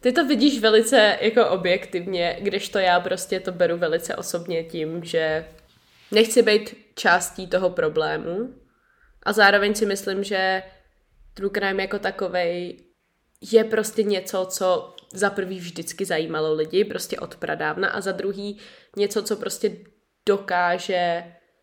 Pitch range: 180-215 Hz